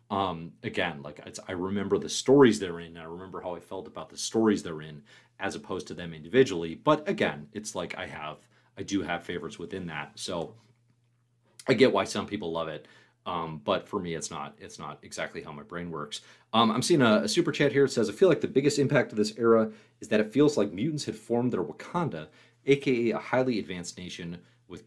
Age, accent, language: 30-49, American, English